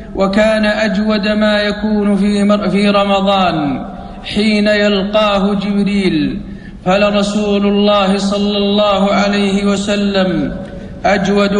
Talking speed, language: 90 wpm, Arabic